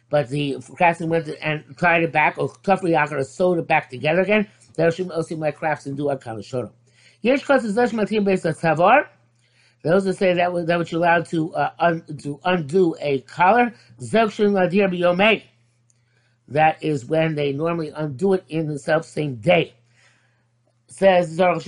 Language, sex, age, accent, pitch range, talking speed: English, male, 50-69, American, 140-195 Hz, 175 wpm